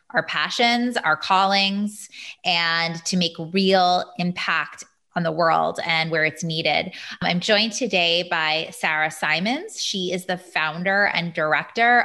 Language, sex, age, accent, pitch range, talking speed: English, female, 20-39, American, 170-215 Hz, 140 wpm